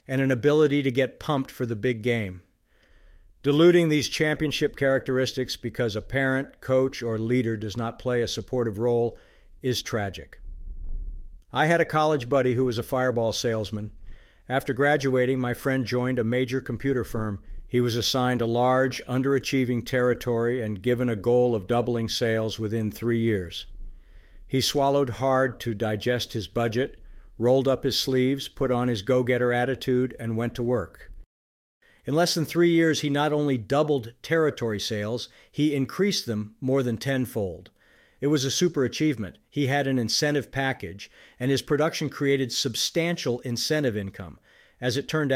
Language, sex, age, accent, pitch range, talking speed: English, male, 50-69, American, 115-140 Hz, 160 wpm